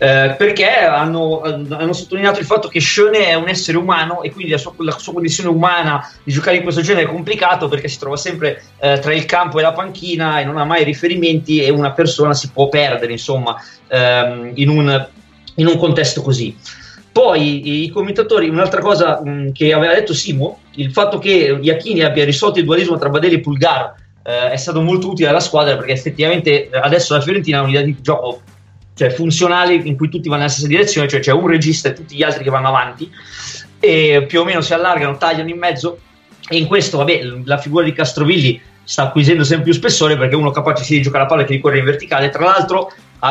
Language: Italian